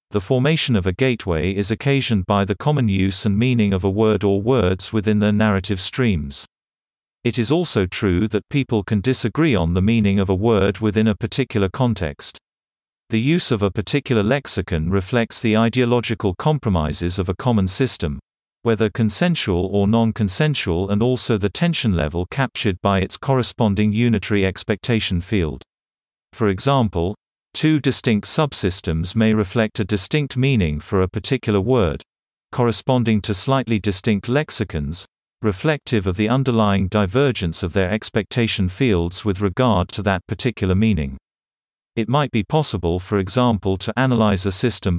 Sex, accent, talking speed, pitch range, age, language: male, British, 150 wpm, 95-120 Hz, 50-69, English